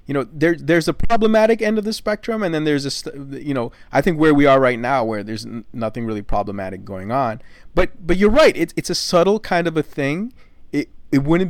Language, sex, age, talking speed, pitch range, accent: English, male, 30-49, 235 wpm, 115-155 Hz, American